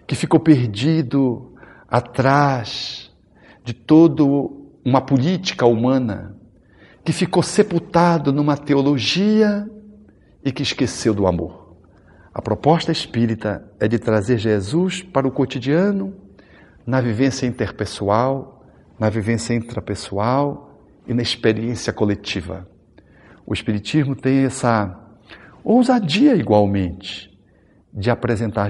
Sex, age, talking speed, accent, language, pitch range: male, 60-79, 100 wpm, Brazilian, Portuguese, 105-150 Hz